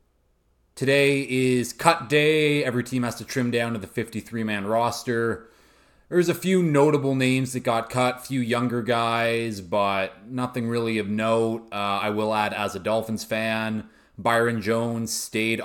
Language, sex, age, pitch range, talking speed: English, male, 20-39, 105-125 Hz, 160 wpm